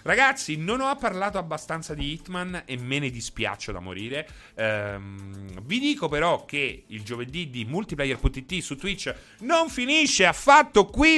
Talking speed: 150 wpm